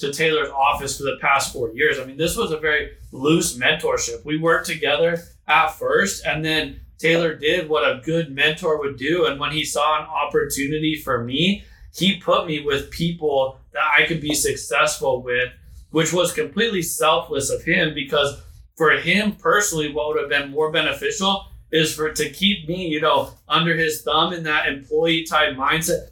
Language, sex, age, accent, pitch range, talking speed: English, male, 20-39, American, 140-165 Hz, 185 wpm